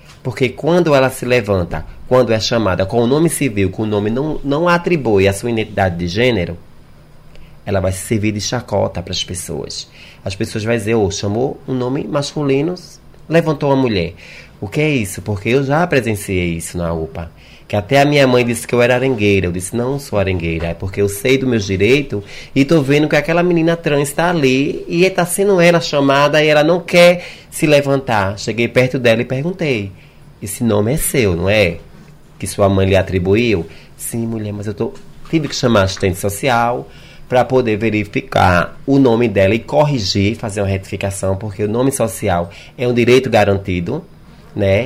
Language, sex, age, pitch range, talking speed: Portuguese, male, 20-39, 100-140 Hz, 200 wpm